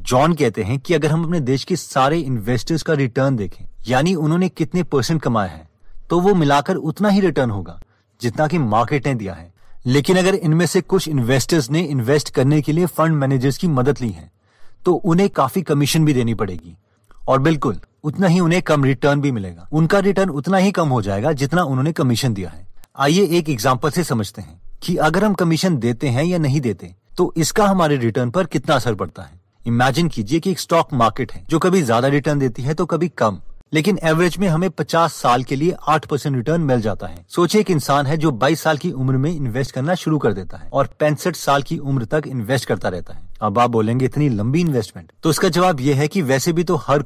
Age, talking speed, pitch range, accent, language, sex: 30-49, 220 wpm, 115-165 Hz, native, Hindi, male